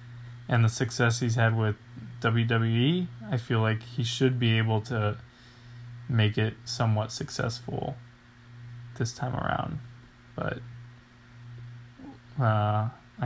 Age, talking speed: 20-39, 110 wpm